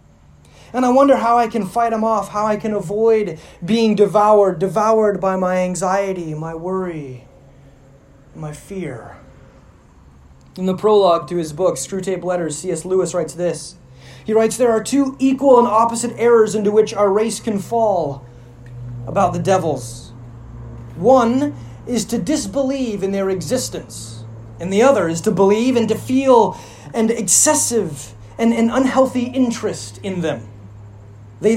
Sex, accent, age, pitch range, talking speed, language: male, American, 30-49, 160-240 Hz, 150 wpm, English